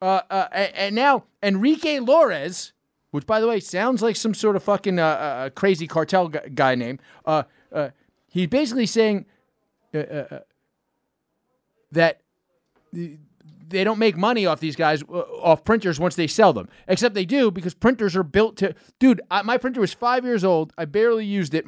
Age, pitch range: 30-49, 160-210 Hz